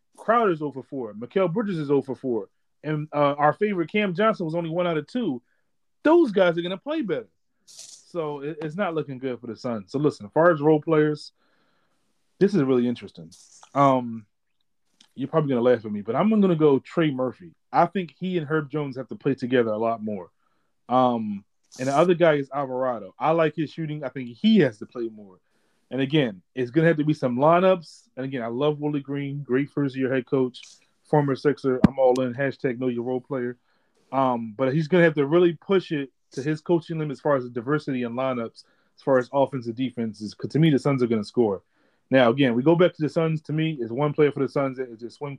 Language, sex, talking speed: English, male, 235 wpm